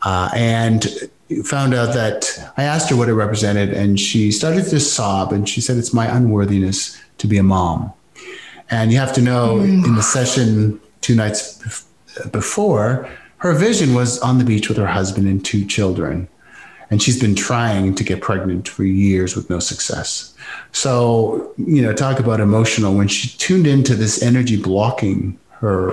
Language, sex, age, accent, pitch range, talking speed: English, male, 30-49, American, 100-125 Hz, 175 wpm